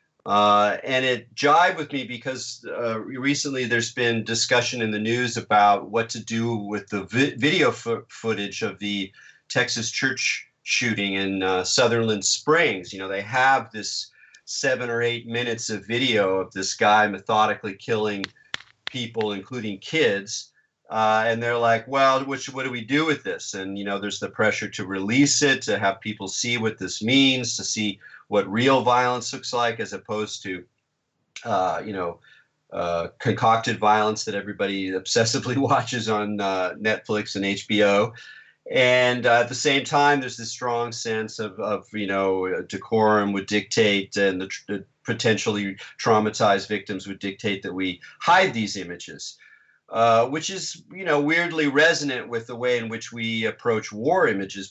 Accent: American